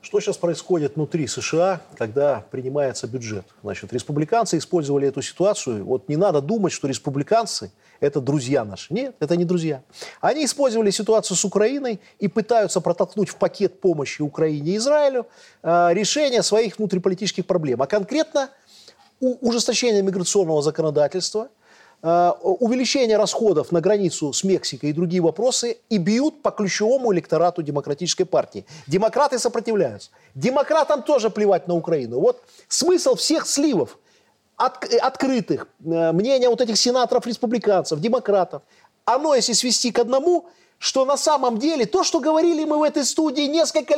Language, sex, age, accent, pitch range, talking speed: Russian, male, 30-49, native, 170-255 Hz, 140 wpm